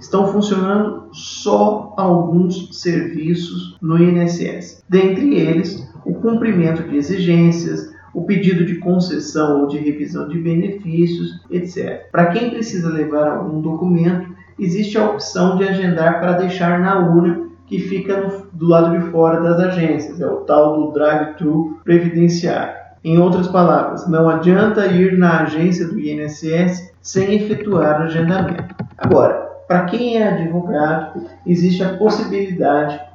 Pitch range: 155-185 Hz